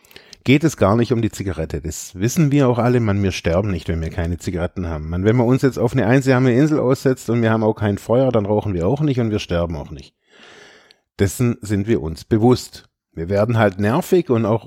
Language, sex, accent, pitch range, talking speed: German, male, German, 100-135 Hz, 235 wpm